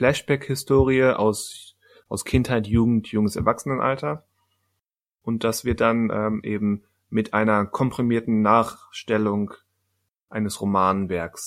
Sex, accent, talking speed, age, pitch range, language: male, German, 100 wpm, 30-49, 95-115 Hz, German